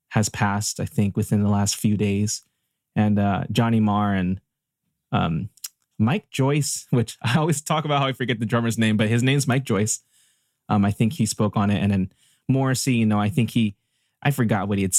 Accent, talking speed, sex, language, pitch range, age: American, 210 wpm, male, English, 105-130 Hz, 20-39